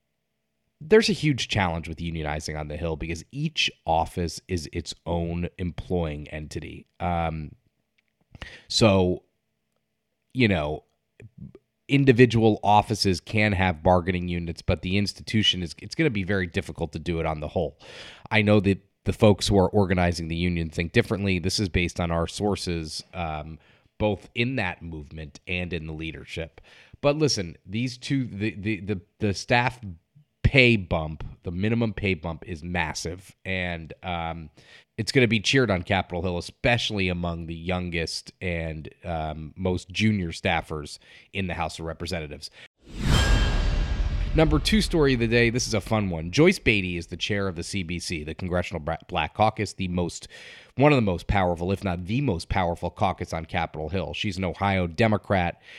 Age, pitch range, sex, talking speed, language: 30-49, 85-105 Hz, male, 165 wpm, English